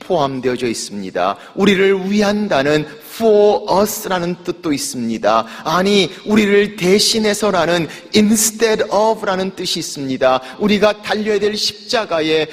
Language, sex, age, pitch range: Korean, male, 40-59, 135-210 Hz